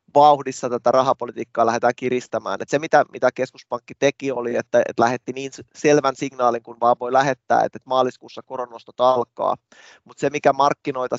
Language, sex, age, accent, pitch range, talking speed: Finnish, male, 20-39, native, 120-135 Hz, 160 wpm